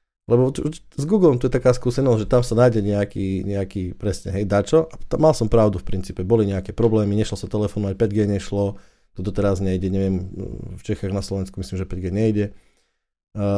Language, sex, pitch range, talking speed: Slovak, male, 100-125 Hz, 200 wpm